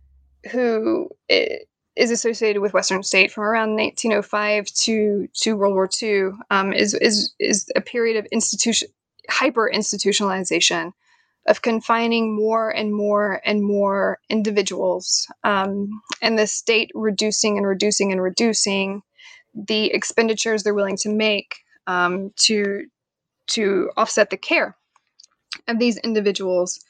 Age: 20-39